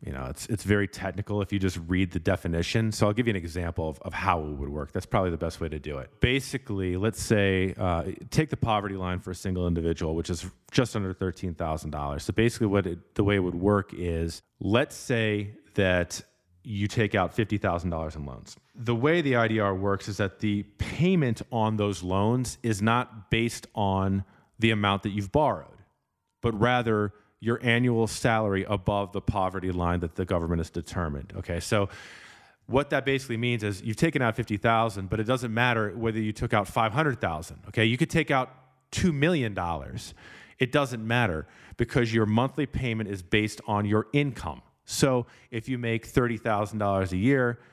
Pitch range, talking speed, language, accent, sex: 95-120 Hz, 185 wpm, English, American, male